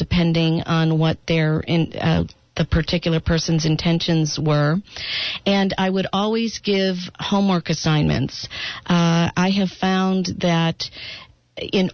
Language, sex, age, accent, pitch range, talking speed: English, female, 50-69, American, 155-175 Hz, 110 wpm